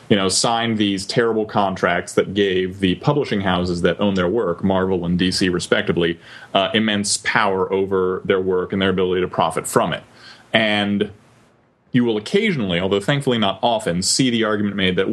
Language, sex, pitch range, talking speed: English, male, 95-120 Hz, 180 wpm